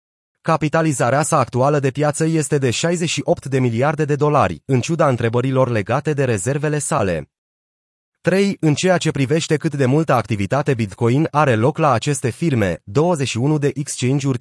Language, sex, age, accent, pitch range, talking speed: Romanian, male, 30-49, native, 120-155 Hz, 155 wpm